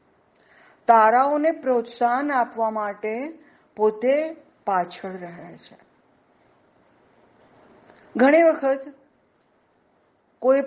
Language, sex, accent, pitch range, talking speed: Gujarati, female, native, 190-270 Hz, 60 wpm